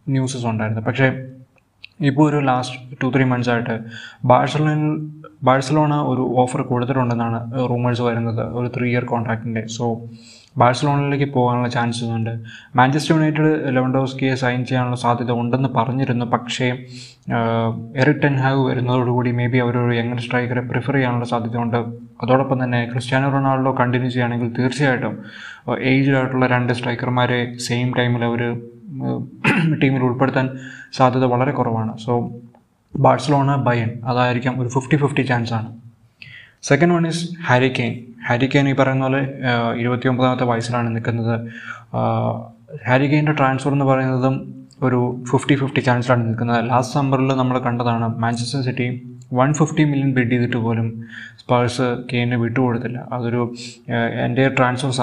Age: 20-39